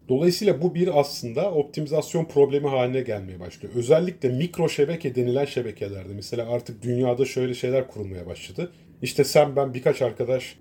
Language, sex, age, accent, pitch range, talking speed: Turkish, male, 30-49, native, 120-160 Hz, 145 wpm